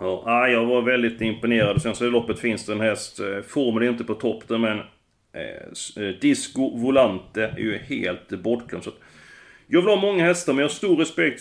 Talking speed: 190 wpm